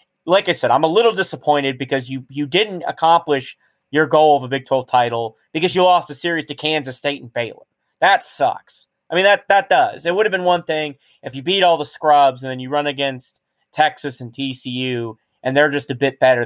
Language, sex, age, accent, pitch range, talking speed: English, male, 30-49, American, 125-160 Hz, 225 wpm